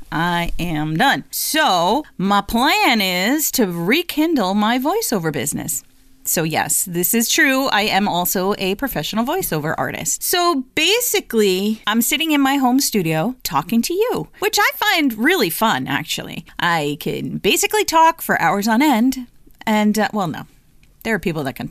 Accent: American